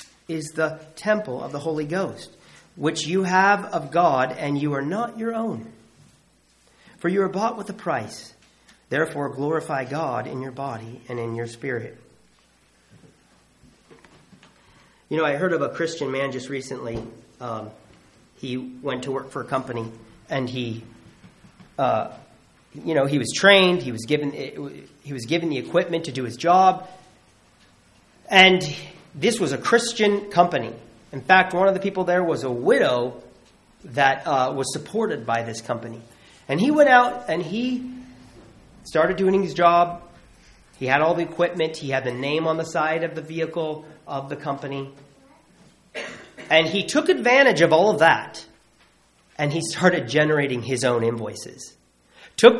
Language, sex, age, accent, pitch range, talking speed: English, male, 40-59, American, 130-185 Hz, 155 wpm